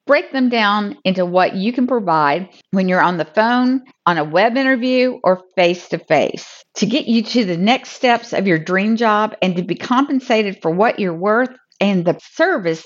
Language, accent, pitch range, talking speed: English, American, 180-240 Hz, 195 wpm